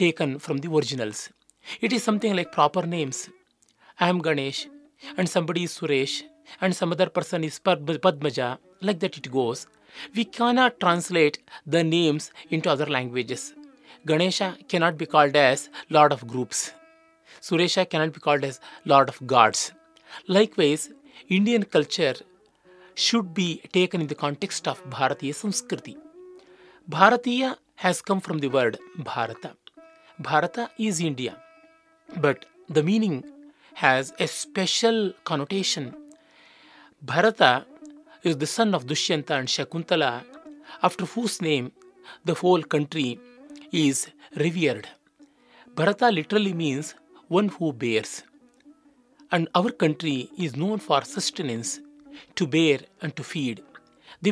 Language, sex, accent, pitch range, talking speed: Kannada, male, native, 150-245 Hz, 125 wpm